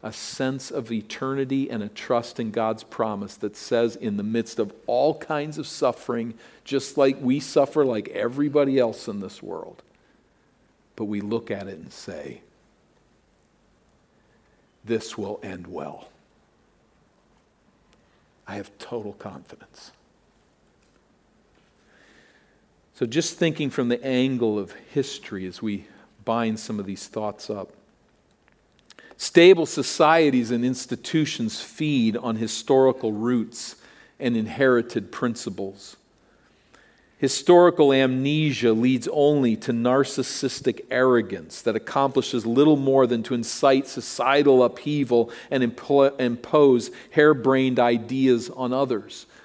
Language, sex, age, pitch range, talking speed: English, male, 50-69, 115-140 Hz, 115 wpm